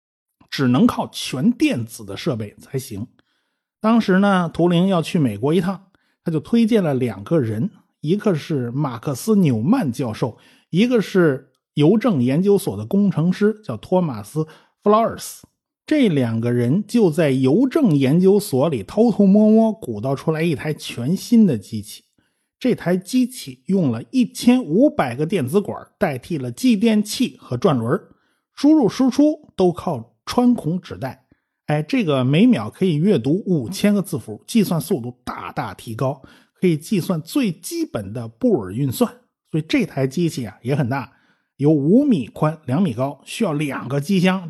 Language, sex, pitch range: Chinese, male, 135-205 Hz